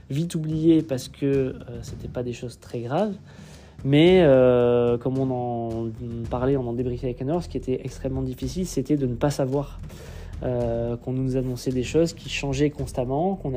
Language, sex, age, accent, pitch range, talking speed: French, male, 20-39, French, 125-155 Hz, 200 wpm